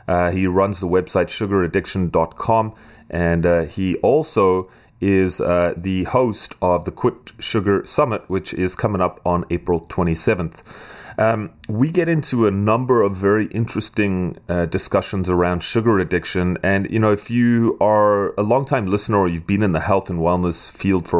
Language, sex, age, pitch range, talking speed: English, male, 30-49, 90-110 Hz, 165 wpm